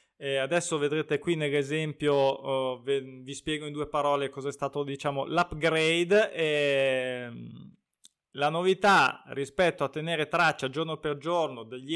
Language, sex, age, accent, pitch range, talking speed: Italian, male, 20-39, native, 145-180 Hz, 140 wpm